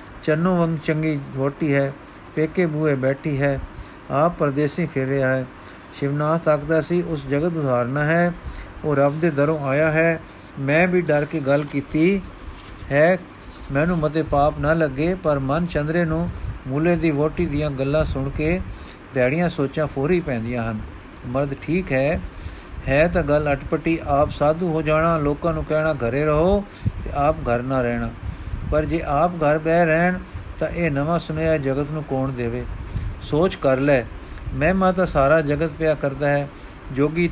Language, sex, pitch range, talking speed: Punjabi, male, 135-160 Hz, 160 wpm